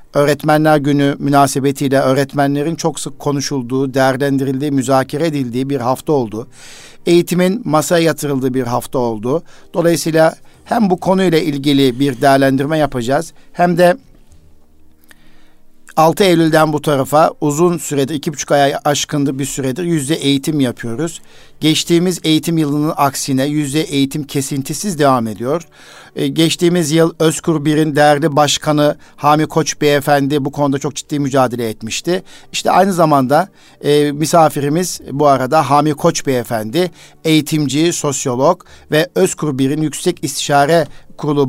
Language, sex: Turkish, male